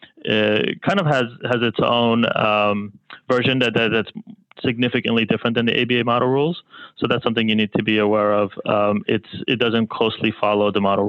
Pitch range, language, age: 105-120 Hz, English, 20-39